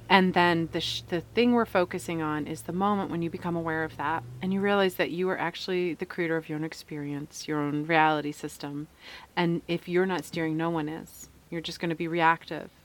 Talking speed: 230 wpm